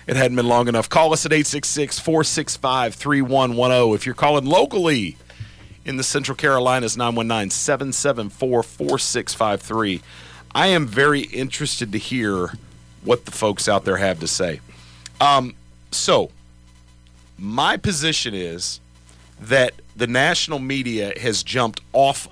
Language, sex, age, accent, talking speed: English, male, 40-59, American, 120 wpm